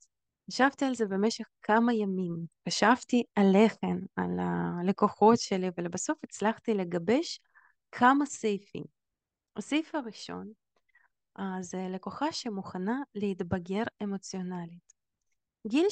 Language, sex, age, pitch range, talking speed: Hebrew, female, 20-39, 185-225 Hz, 95 wpm